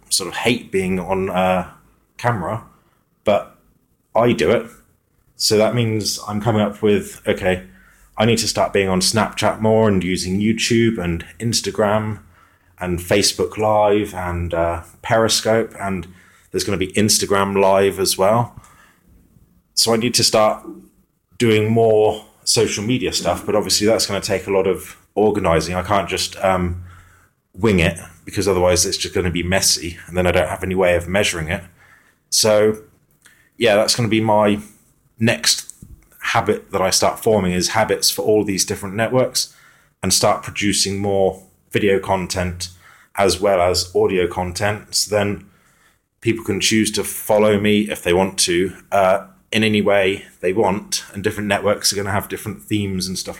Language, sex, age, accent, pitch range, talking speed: English, male, 30-49, British, 90-110 Hz, 165 wpm